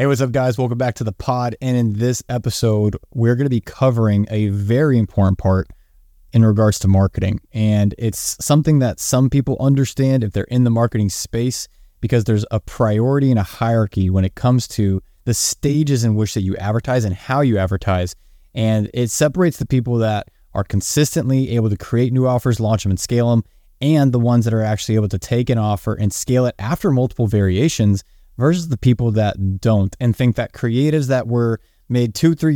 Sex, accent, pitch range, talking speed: male, American, 100-125 Hz, 205 wpm